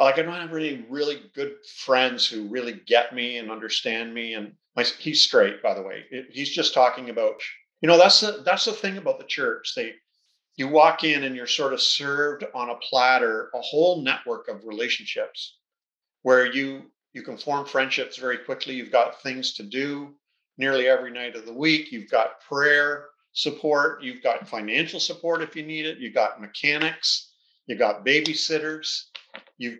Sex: male